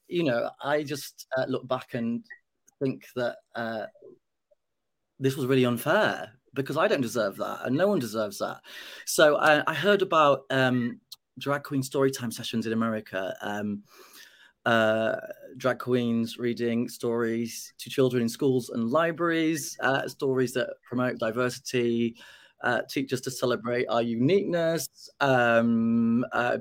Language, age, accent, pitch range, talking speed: English, 30-49, British, 115-140 Hz, 145 wpm